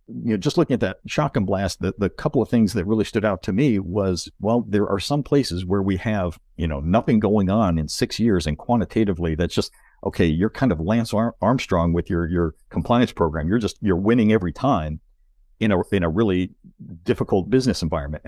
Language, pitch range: English, 85-105 Hz